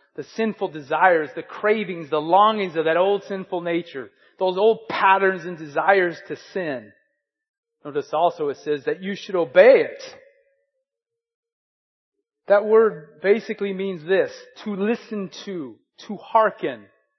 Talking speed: 135 wpm